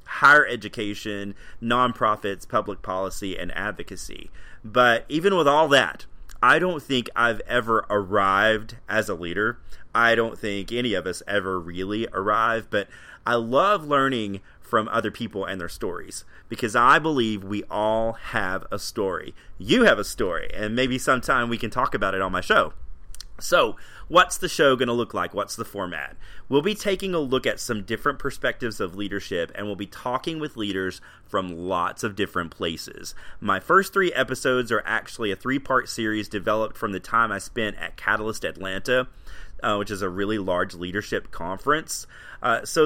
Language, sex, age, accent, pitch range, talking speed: English, male, 30-49, American, 100-125 Hz, 175 wpm